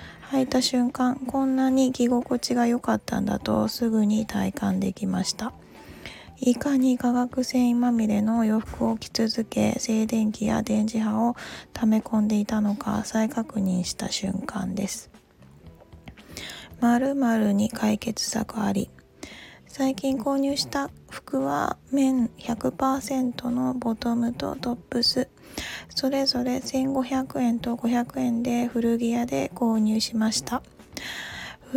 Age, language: 20-39, Japanese